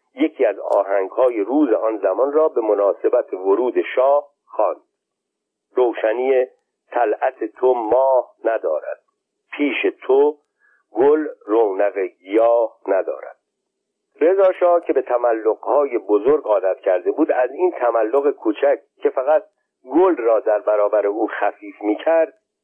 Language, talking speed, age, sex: Persian, 115 wpm, 50-69, male